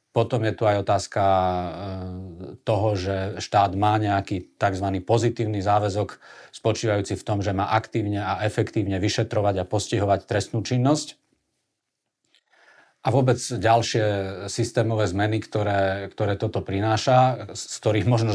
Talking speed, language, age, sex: 125 wpm, Slovak, 40-59, male